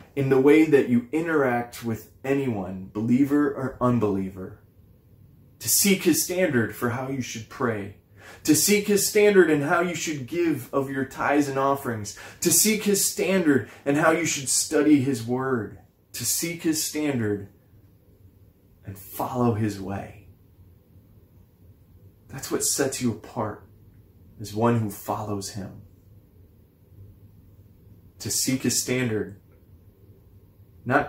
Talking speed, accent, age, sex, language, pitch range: 130 wpm, American, 20-39, male, English, 100-135 Hz